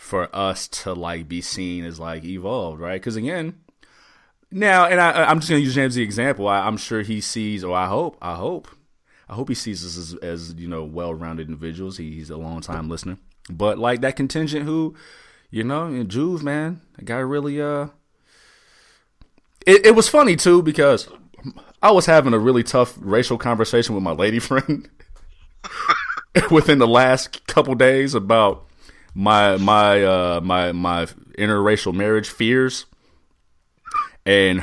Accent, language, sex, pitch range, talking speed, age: American, English, male, 90-135 Hz, 170 wpm, 30-49